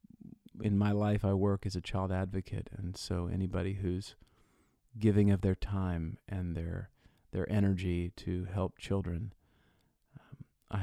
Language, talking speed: English, 145 wpm